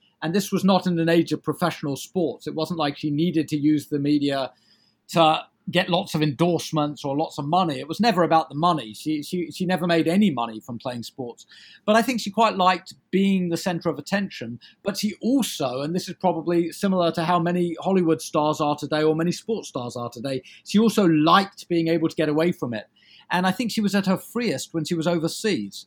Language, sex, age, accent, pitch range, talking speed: English, male, 40-59, British, 150-185 Hz, 225 wpm